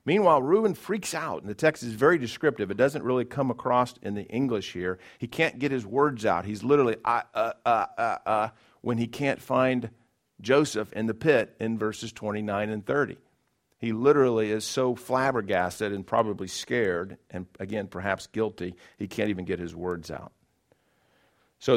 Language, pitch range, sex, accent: English, 95-125 Hz, male, American